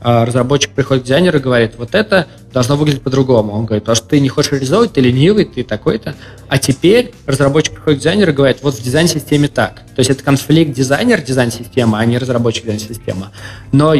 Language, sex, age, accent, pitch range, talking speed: Russian, male, 20-39, native, 115-145 Hz, 200 wpm